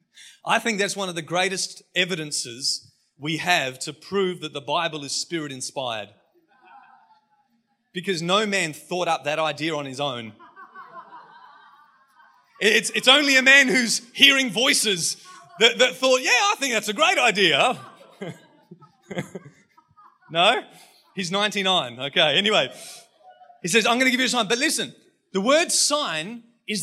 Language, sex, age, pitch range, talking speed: English, male, 30-49, 190-255 Hz, 145 wpm